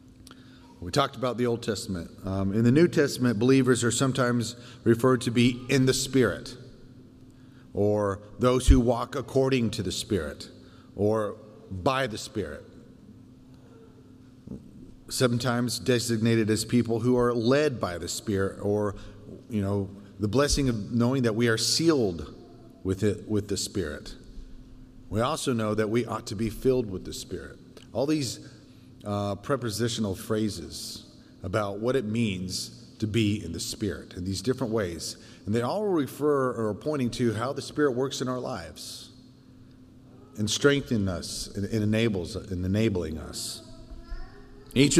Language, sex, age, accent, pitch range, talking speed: English, male, 30-49, American, 105-130 Hz, 150 wpm